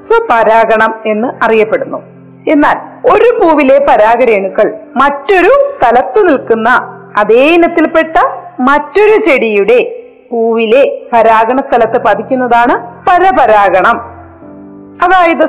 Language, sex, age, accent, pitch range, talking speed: Malayalam, female, 40-59, native, 235-315 Hz, 80 wpm